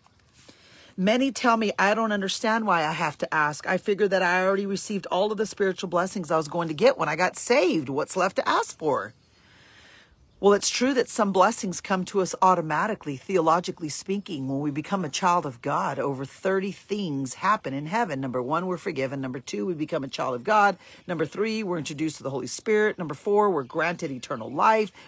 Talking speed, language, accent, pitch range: 210 wpm, English, American, 150-205 Hz